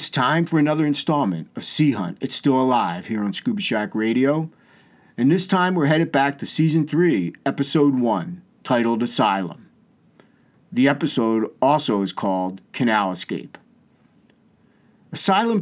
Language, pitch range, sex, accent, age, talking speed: English, 115-155 Hz, male, American, 50-69, 140 wpm